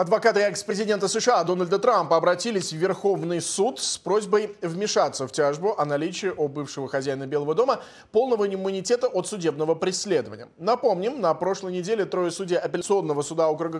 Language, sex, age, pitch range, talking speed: Russian, male, 20-39, 155-220 Hz, 150 wpm